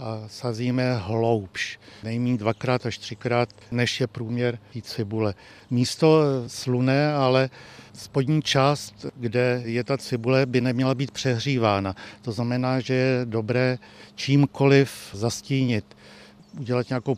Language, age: Czech, 60-79